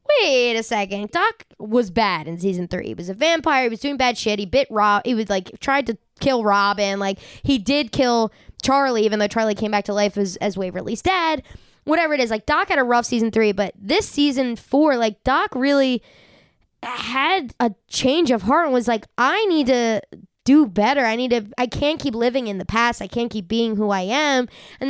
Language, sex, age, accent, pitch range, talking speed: English, female, 20-39, American, 220-290 Hz, 220 wpm